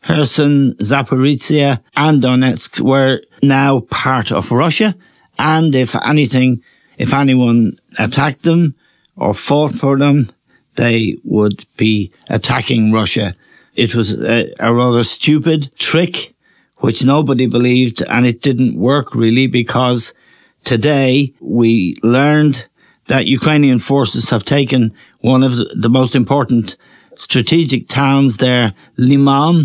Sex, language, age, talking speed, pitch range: male, English, 60-79, 115 wpm, 115-140 Hz